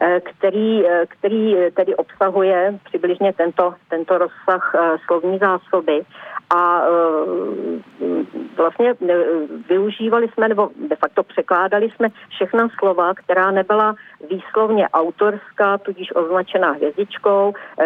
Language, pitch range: Czech, 165-195 Hz